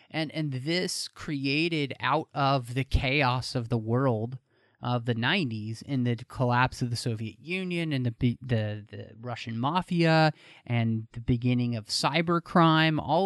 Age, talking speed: 30-49, 150 wpm